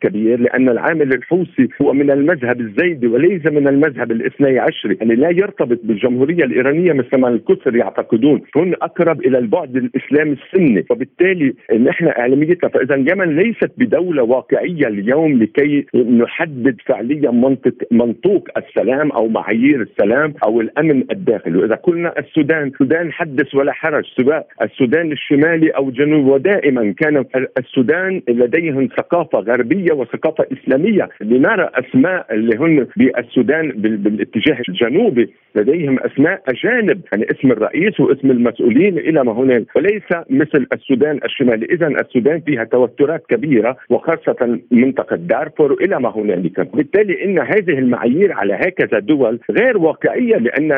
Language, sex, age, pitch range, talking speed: Arabic, male, 50-69, 125-175 Hz, 135 wpm